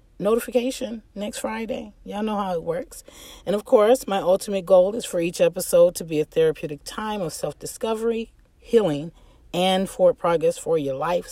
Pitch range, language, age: 160-230 Hz, English, 40-59